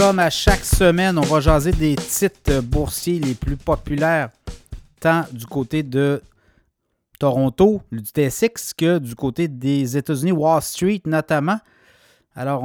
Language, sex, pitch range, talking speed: French, male, 140-180 Hz, 140 wpm